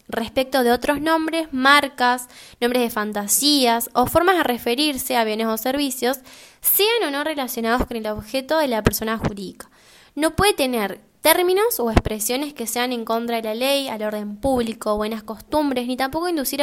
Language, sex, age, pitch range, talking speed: Spanish, female, 10-29, 220-280 Hz, 175 wpm